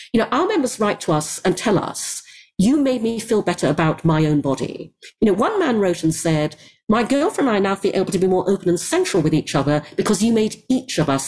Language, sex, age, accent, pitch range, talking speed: English, female, 40-59, British, 155-225 Hz, 255 wpm